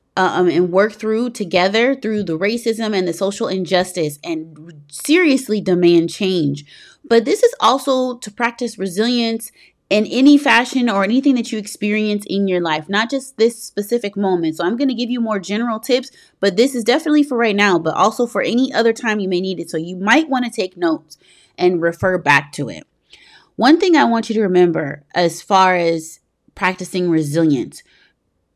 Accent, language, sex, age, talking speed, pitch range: American, English, female, 30-49, 185 wpm, 175-230 Hz